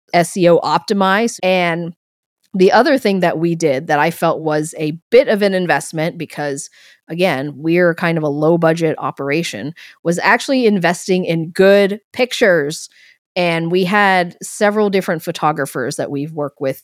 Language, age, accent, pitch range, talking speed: English, 30-49, American, 150-185 Hz, 155 wpm